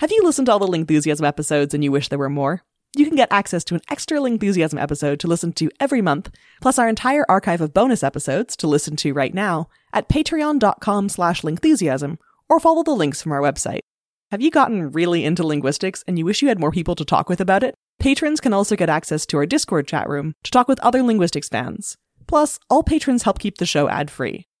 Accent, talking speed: American, 225 wpm